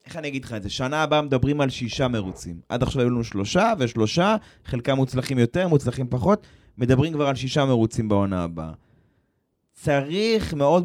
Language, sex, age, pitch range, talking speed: Hebrew, male, 20-39, 125-170 Hz, 175 wpm